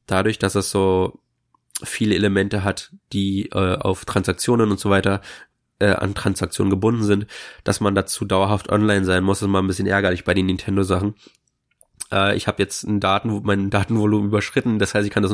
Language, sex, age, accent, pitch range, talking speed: German, male, 20-39, German, 95-115 Hz, 190 wpm